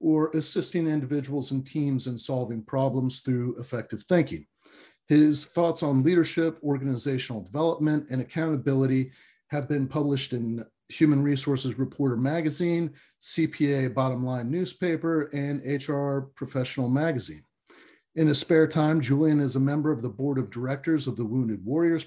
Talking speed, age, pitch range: 140 wpm, 40-59, 125-155 Hz